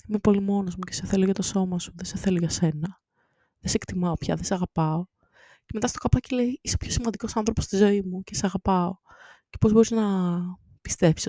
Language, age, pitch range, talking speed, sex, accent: Greek, 20-39, 165-215 Hz, 235 wpm, female, native